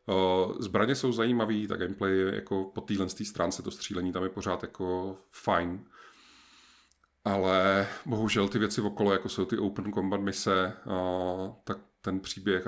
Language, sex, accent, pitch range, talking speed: Czech, male, native, 95-110 Hz, 150 wpm